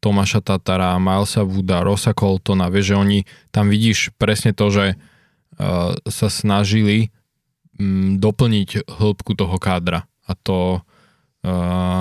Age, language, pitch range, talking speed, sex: 20-39, Slovak, 95-105 Hz, 120 wpm, male